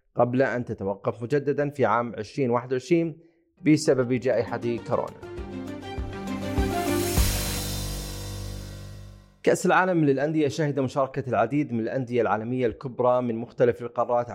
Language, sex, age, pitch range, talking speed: Arabic, male, 30-49, 115-140 Hz, 95 wpm